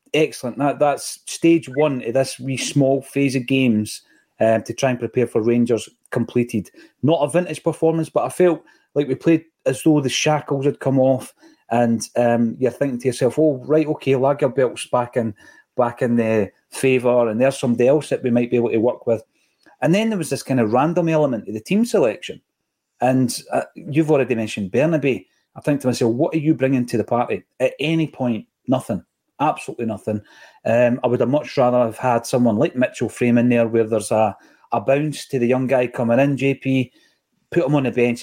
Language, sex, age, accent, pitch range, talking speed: English, male, 30-49, British, 120-145 Hz, 205 wpm